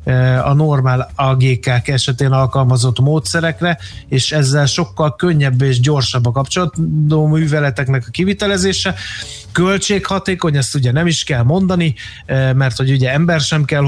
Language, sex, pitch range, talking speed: Hungarian, male, 130-155 Hz, 125 wpm